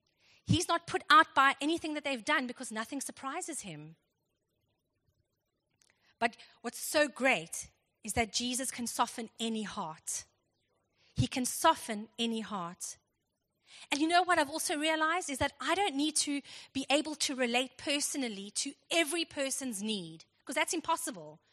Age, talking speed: 30-49, 150 wpm